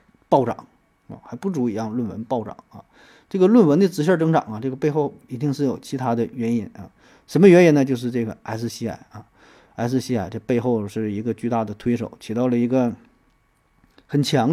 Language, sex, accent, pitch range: Chinese, male, native, 115-150 Hz